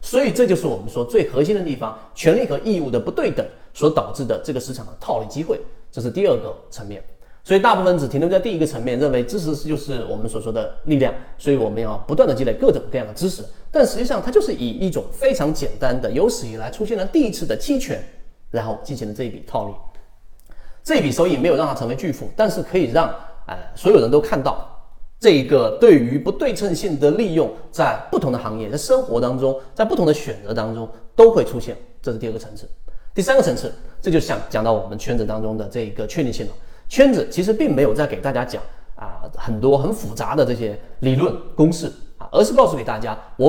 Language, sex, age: Chinese, male, 30-49